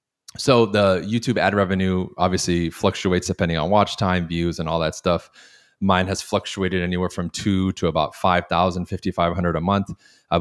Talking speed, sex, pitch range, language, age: 185 wpm, male, 85-95 Hz, English, 20-39